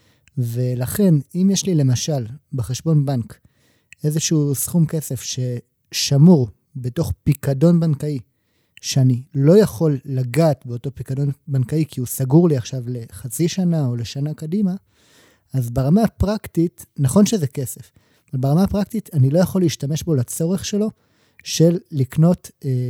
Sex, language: male, Hebrew